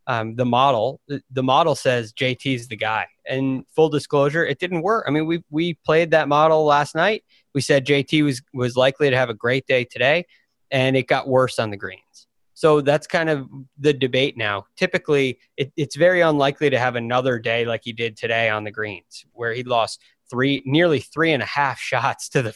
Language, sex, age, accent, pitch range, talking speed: English, male, 20-39, American, 125-150 Hz, 205 wpm